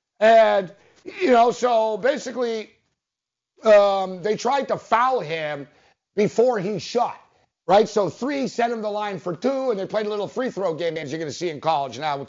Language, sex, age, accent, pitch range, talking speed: English, male, 50-69, American, 200-270 Hz, 195 wpm